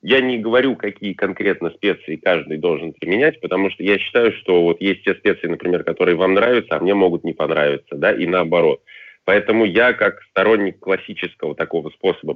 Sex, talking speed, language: male, 180 wpm, Russian